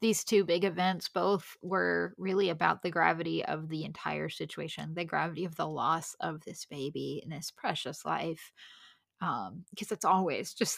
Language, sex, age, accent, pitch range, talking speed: English, female, 10-29, American, 165-195 Hz, 175 wpm